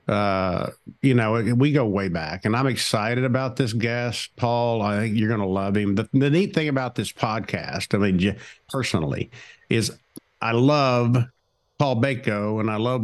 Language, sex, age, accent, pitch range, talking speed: English, male, 50-69, American, 105-130 Hz, 180 wpm